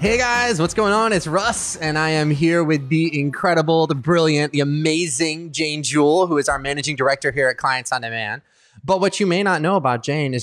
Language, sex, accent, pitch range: English, male, American, 130-175 Hz